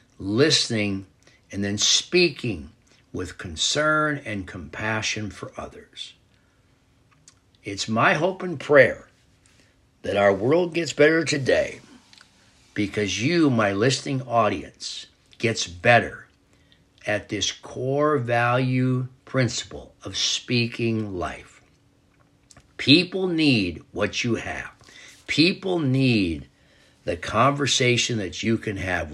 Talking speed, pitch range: 100 wpm, 105-145 Hz